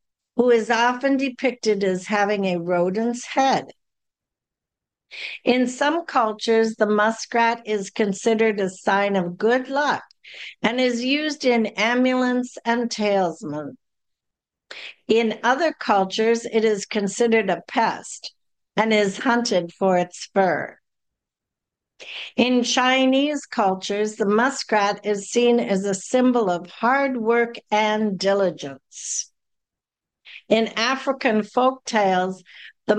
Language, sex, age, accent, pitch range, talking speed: English, female, 60-79, American, 200-245 Hz, 110 wpm